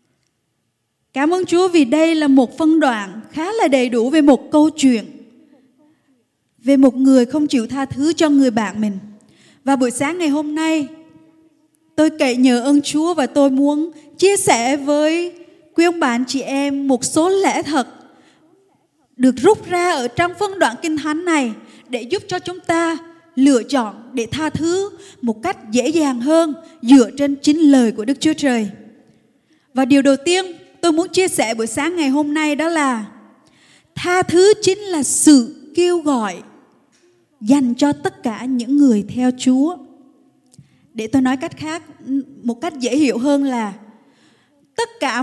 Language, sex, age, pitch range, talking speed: Vietnamese, female, 20-39, 260-335 Hz, 170 wpm